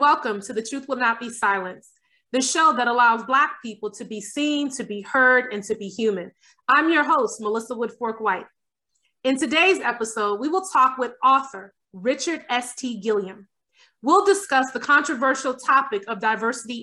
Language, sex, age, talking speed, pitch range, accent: English, female, 30-49, 170 wpm, 225-290 Hz, American